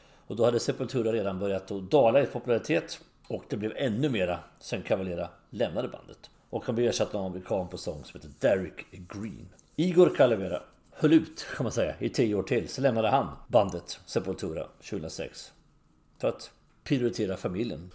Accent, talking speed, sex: Swedish, 175 wpm, male